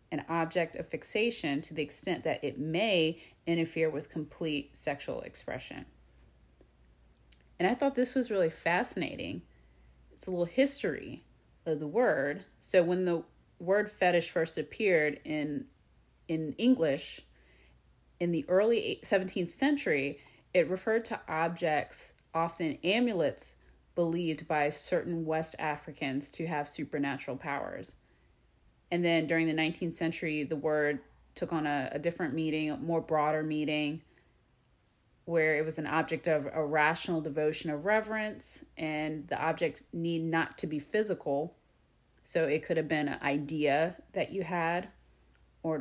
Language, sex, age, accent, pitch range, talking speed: English, female, 30-49, American, 145-170 Hz, 140 wpm